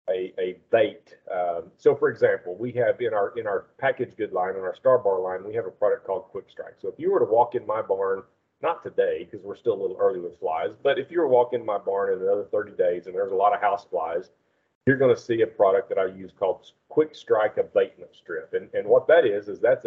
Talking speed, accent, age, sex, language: 265 wpm, American, 40-59, male, English